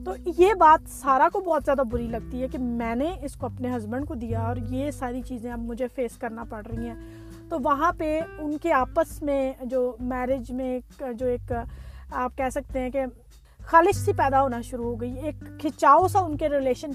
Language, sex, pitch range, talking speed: Urdu, female, 245-305 Hz, 210 wpm